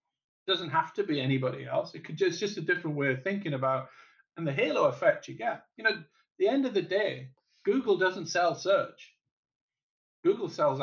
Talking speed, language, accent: 205 wpm, English, British